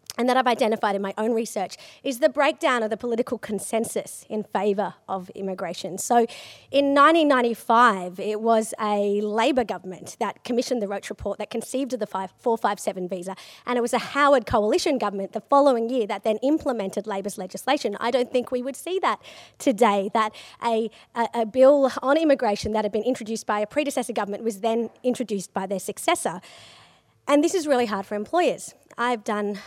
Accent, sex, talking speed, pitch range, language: Australian, female, 180 wpm, 210-270 Hz, English